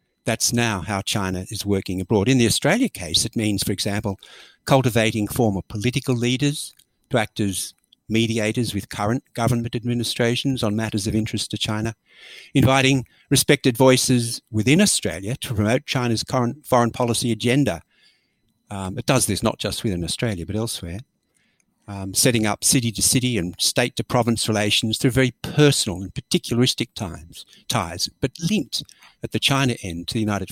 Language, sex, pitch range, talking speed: English, male, 105-130 Hz, 150 wpm